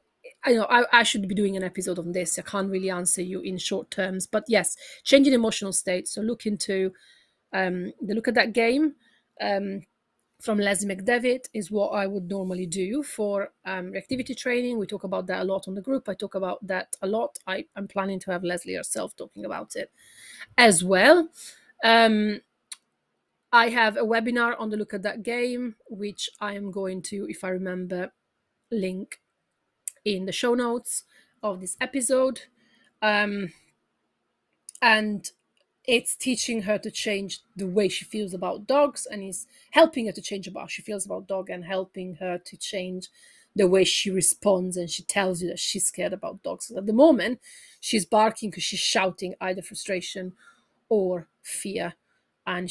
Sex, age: female, 30-49